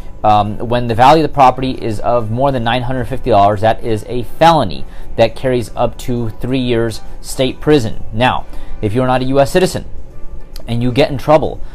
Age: 30-49